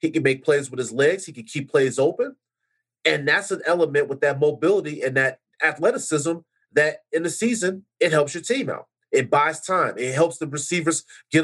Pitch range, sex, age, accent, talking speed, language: 145-210 Hz, male, 30-49, American, 205 wpm, English